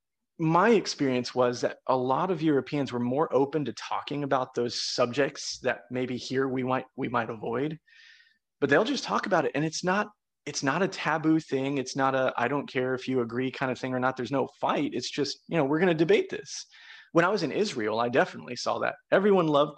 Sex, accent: male, American